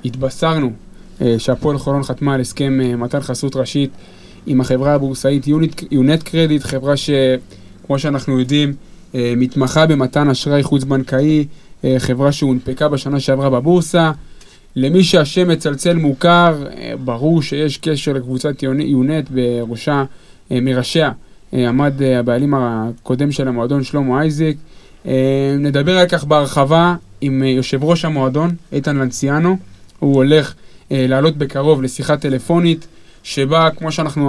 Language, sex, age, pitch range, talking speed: Hebrew, male, 20-39, 130-160 Hz, 135 wpm